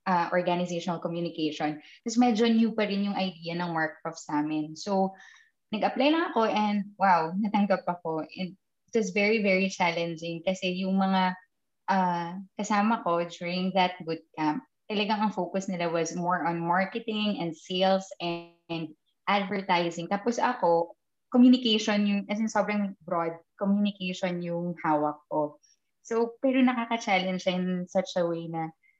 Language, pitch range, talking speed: English, 170-220 Hz, 145 wpm